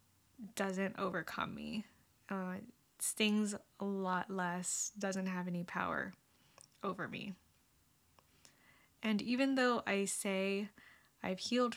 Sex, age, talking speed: female, 10-29, 105 wpm